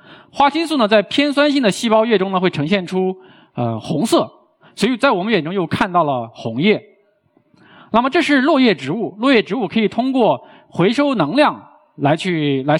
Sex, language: male, Chinese